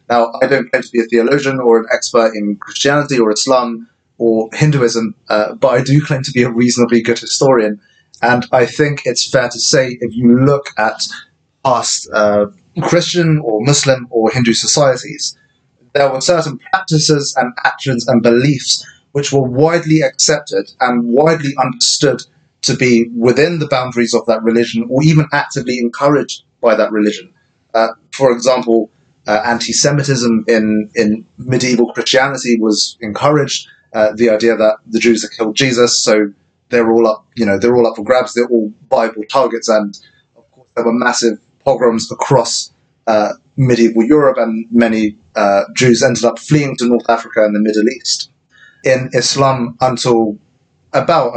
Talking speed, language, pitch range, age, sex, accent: 165 wpm, English, 115-135 Hz, 30-49, male, British